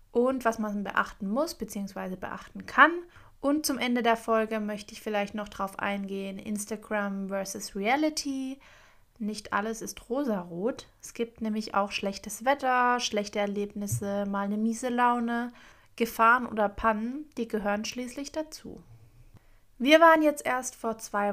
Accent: German